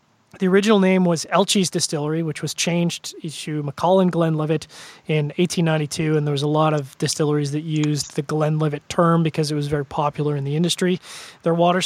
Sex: male